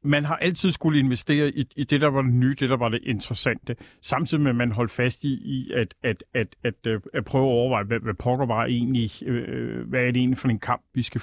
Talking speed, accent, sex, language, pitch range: 225 wpm, native, male, Danish, 120-150 Hz